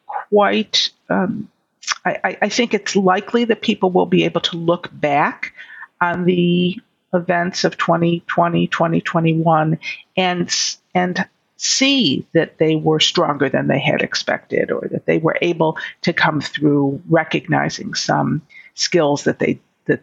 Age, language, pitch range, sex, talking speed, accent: 50-69, English, 170-220 Hz, female, 135 wpm, American